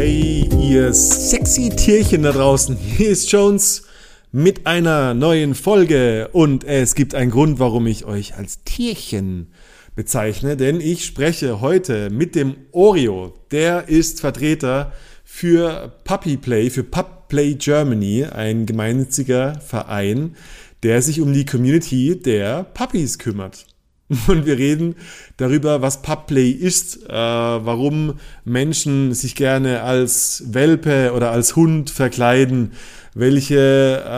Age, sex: 30-49, male